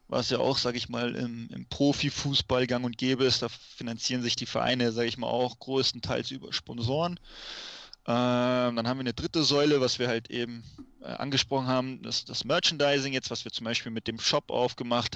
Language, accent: German, German